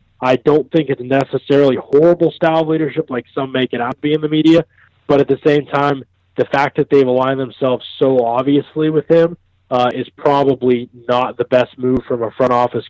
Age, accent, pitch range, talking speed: 20-39, American, 115-140 Hz, 210 wpm